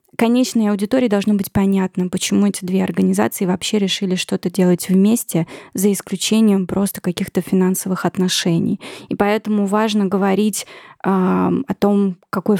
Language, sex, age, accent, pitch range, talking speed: Russian, female, 20-39, native, 185-205 Hz, 135 wpm